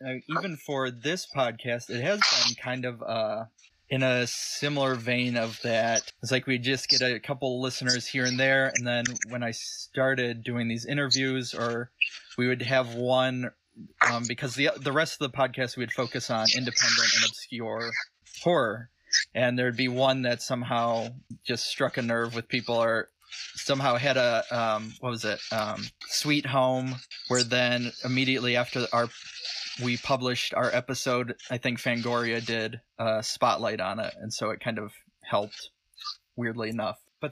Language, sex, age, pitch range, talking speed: English, male, 20-39, 115-130 Hz, 170 wpm